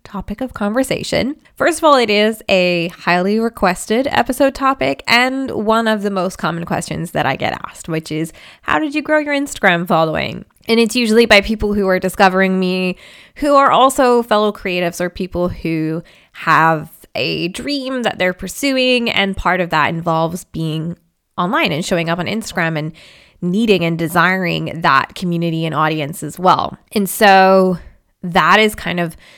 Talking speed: 170 wpm